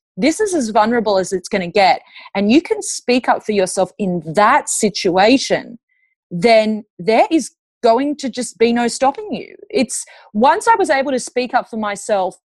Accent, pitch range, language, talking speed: Australian, 200-255 Hz, English, 190 wpm